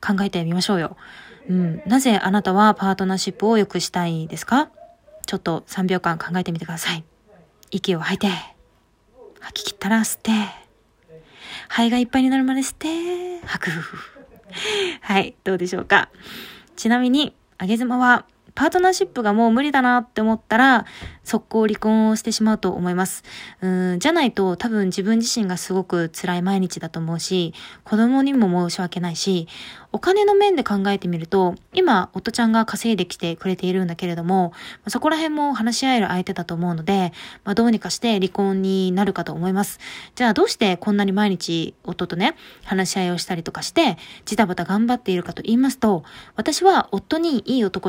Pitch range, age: 180-240 Hz, 20-39